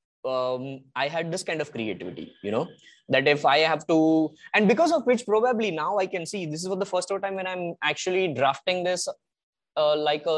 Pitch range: 140-170 Hz